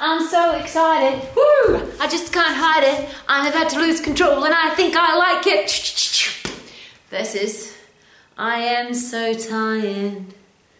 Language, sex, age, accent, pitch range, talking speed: English, female, 30-49, Australian, 185-240 Hz, 145 wpm